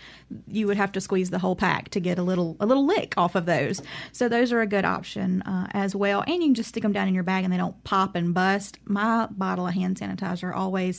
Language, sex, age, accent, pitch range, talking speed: English, female, 30-49, American, 185-225 Hz, 270 wpm